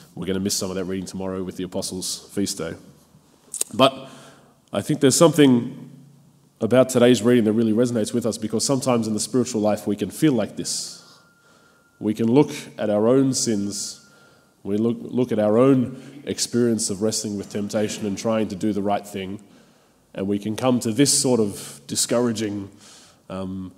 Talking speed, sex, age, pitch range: 185 wpm, male, 20-39, 100-120 Hz